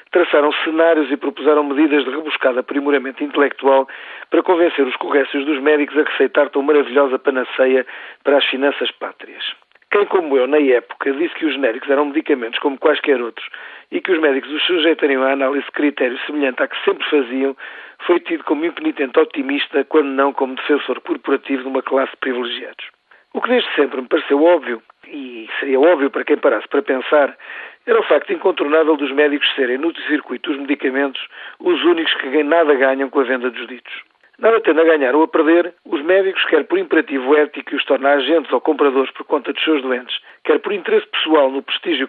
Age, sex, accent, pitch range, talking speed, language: 40-59, male, Portuguese, 140-180 Hz, 190 wpm, Portuguese